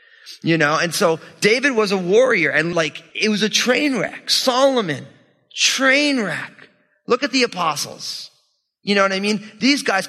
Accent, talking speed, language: American, 170 wpm, English